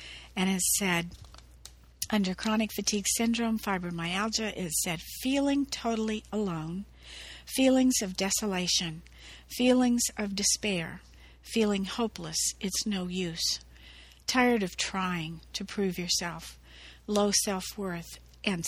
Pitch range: 165-215 Hz